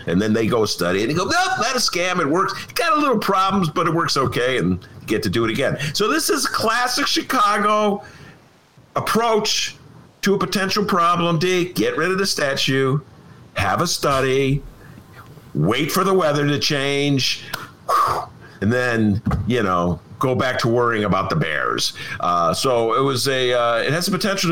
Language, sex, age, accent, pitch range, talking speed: English, male, 50-69, American, 115-180 Hz, 190 wpm